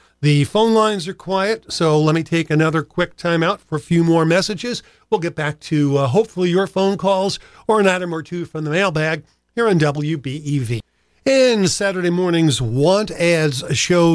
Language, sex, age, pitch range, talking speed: English, male, 50-69, 145-180 Hz, 180 wpm